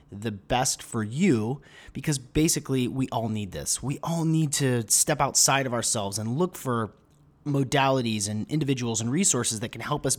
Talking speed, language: 175 wpm, English